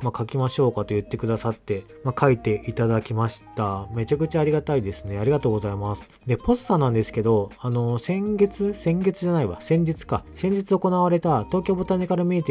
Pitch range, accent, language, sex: 110-165 Hz, native, Japanese, male